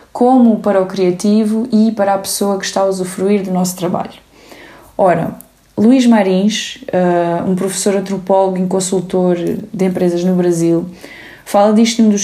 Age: 20-39